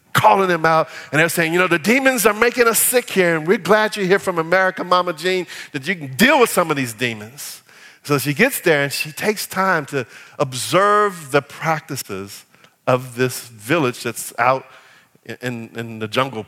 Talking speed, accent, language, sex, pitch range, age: 195 wpm, American, English, male, 130-190 Hz, 50-69